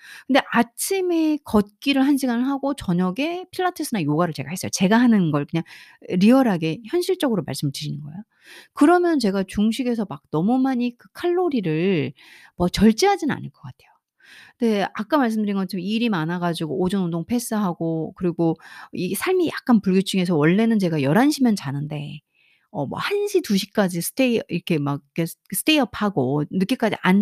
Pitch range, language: 175-270 Hz, Korean